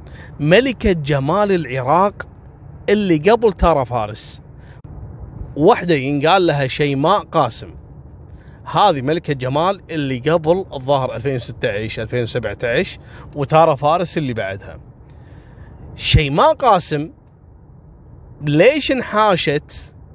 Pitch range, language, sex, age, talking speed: 125-155 Hz, Arabic, male, 30-49, 80 wpm